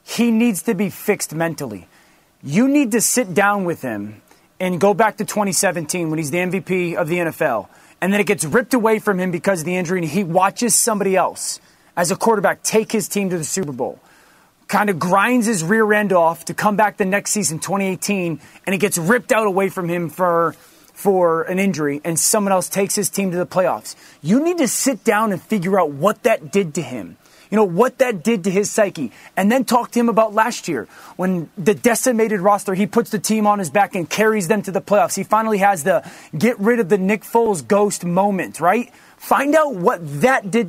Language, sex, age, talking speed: English, male, 30-49, 225 wpm